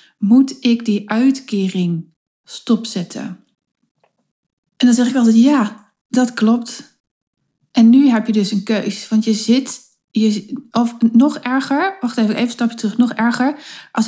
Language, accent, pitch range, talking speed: Dutch, Dutch, 205-245 Hz, 150 wpm